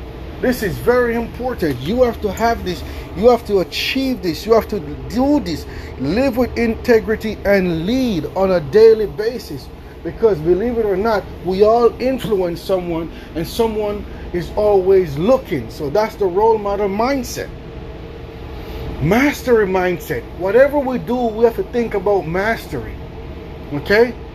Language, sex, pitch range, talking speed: English, male, 200-255 Hz, 150 wpm